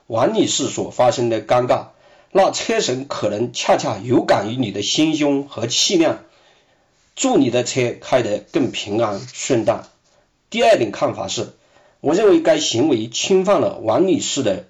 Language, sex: Chinese, male